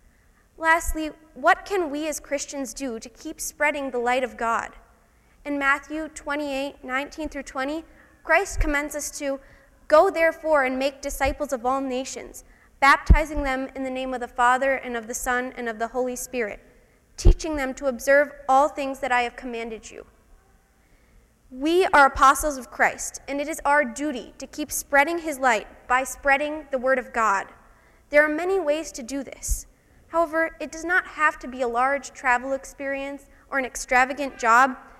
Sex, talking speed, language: female, 175 wpm, English